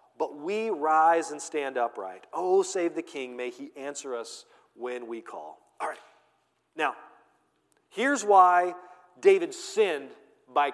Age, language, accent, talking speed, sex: 40-59, English, American, 140 wpm, male